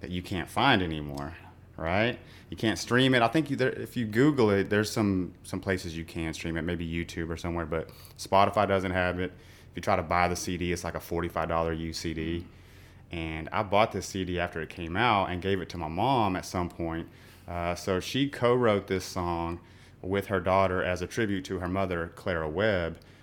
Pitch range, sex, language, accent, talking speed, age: 85-100 Hz, male, English, American, 210 wpm, 30-49